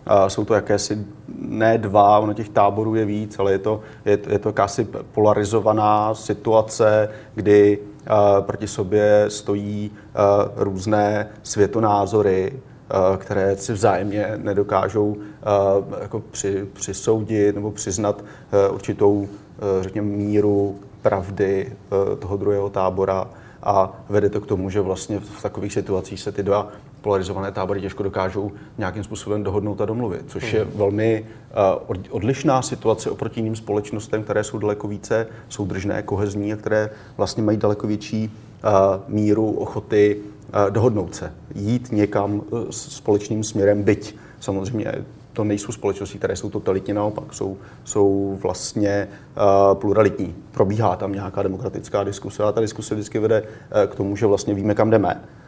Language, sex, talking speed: Czech, male, 130 wpm